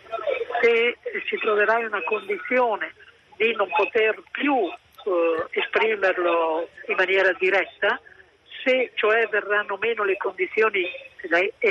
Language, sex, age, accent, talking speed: Italian, female, 50-69, native, 115 wpm